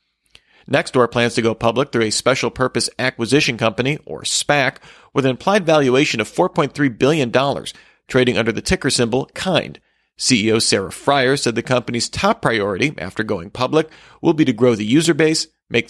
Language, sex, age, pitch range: English, male, 40-59, 115-145 Hz